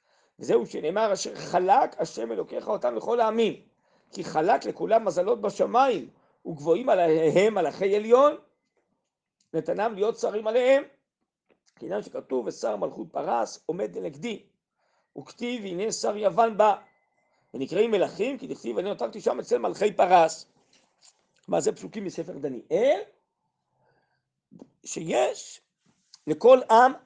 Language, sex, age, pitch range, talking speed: Hebrew, male, 50-69, 170-270 Hz, 115 wpm